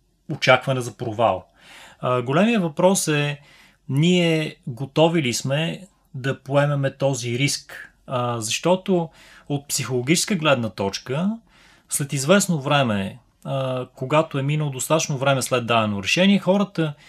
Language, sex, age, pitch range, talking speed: Bulgarian, male, 30-49, 125-160 Hz, 120 wpm